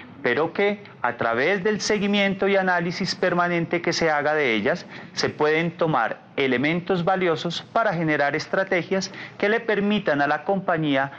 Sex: male